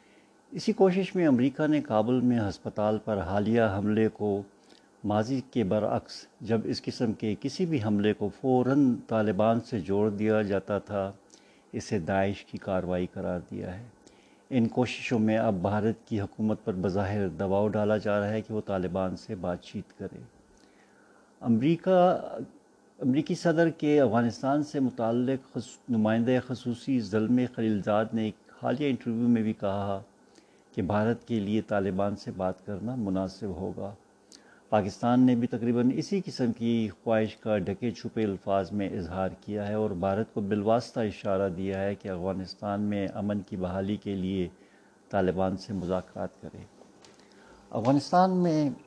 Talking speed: 150 wpm